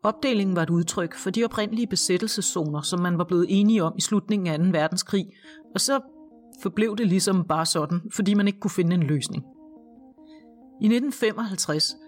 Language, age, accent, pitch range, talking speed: Danish, 40-59, native, 175-225 Hz, 175 wpm